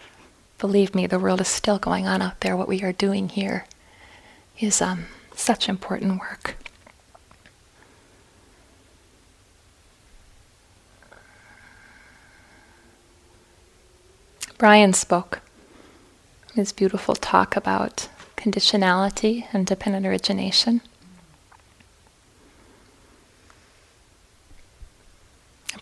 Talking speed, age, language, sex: 75 wpm, 20-39, English, female